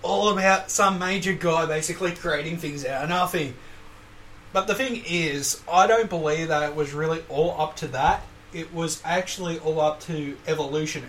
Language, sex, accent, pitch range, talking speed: English, male, Australian, 135-175 Hz, 180 wpm